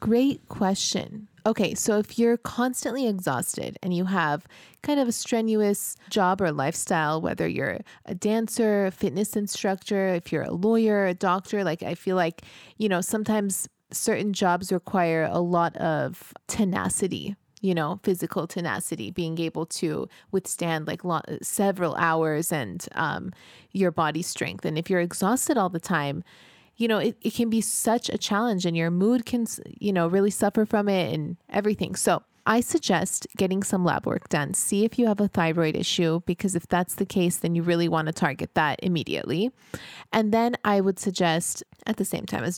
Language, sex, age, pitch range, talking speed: English, female, 20-39, 170-210 Hz, 180 wpm